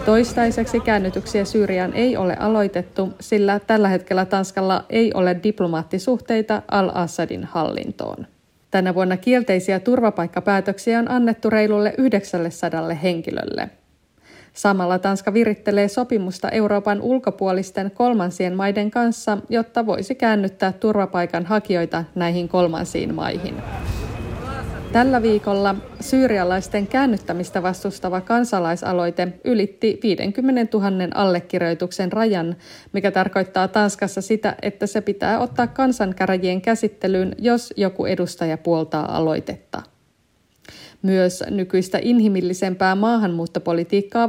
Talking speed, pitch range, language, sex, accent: 95 wpm, 180-220 Hz, Finnish, female, native